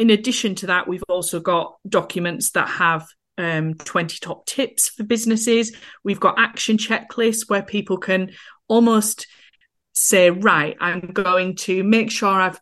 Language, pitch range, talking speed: English, 175-220 Hz, 150 wpm